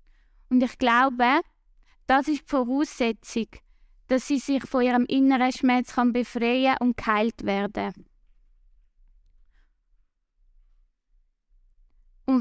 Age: 20-39